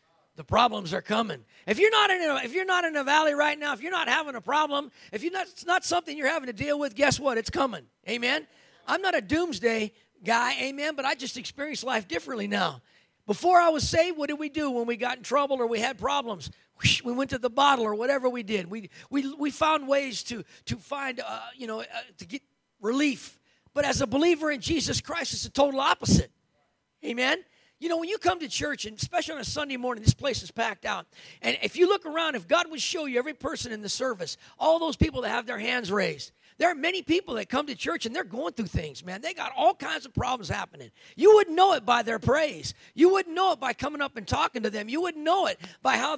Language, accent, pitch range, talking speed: English, American, 245-330 Hz, 250 wpm